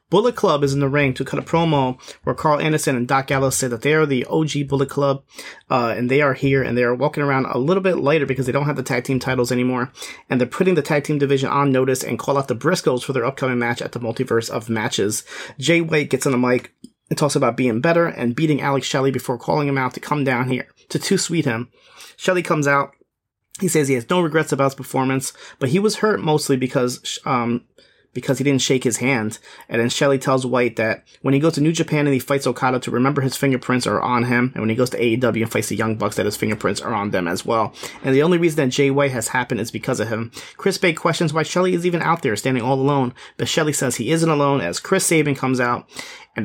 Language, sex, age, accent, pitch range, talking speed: English, male, 30-49, American, 125-150 Hz, 260 wpm